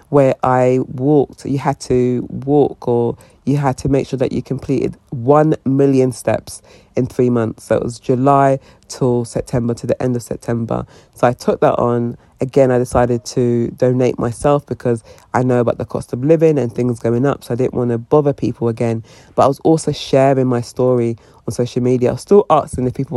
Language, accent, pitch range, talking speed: English, British, 120-145 Hz, 205 wpm